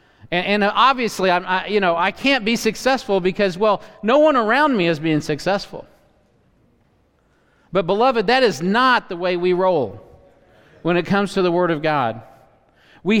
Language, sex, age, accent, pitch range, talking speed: English, male, 50-69, American, 150-230 Hz, 170 wpm